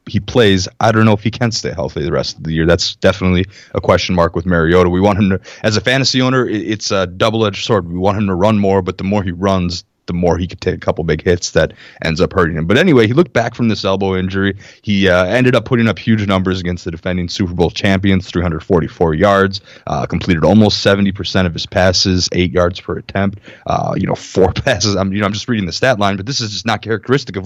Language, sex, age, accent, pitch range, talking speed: English, male, 20-39, American, 90-110 Hz, 255 wpm